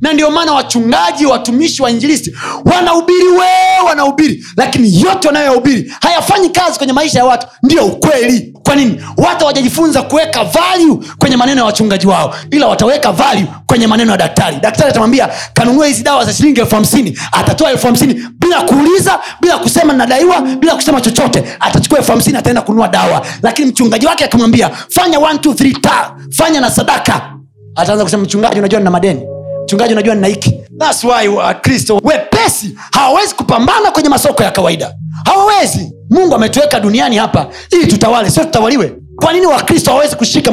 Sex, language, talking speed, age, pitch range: male, Swahili, 160 wpm, 30-49, 235-315 Hz